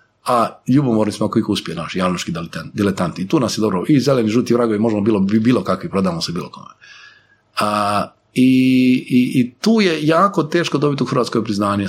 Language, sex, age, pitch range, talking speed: Croatian, male, 40-59, 110-180 Hz, 190 wpm